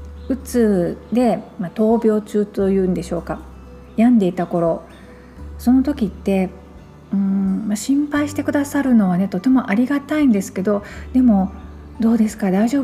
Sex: female